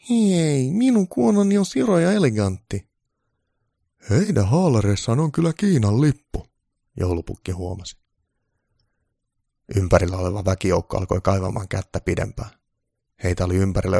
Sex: male